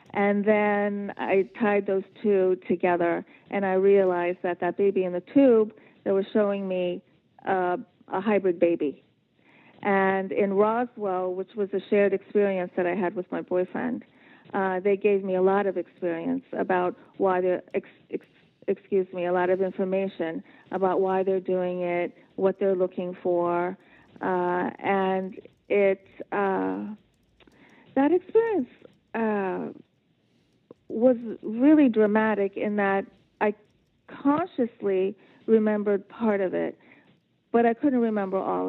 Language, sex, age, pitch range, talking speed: English, female, 40-59, 185-230 Hz, 140 wpm